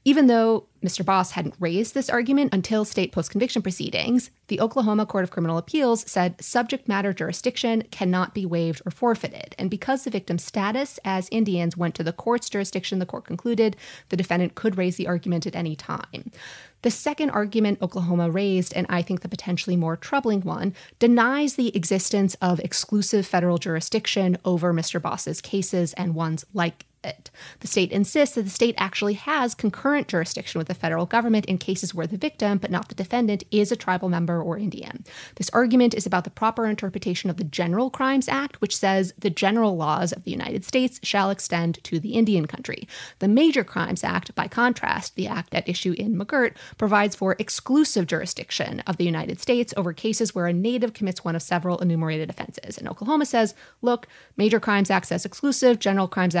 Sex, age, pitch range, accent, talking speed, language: female, 30-49, 180-230 Hz, American, 185 wpm, English